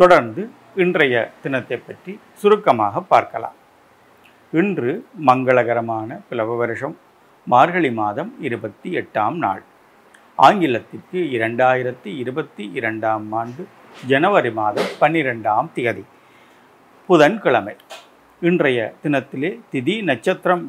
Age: 50-69